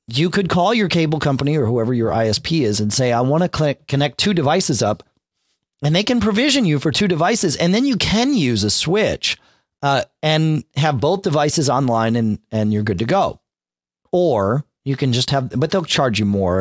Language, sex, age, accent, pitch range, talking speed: English, male, 40-59, American, 110-160 Hz, 205 wpm